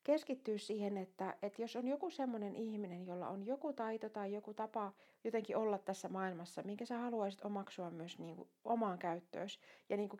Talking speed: 190 wpm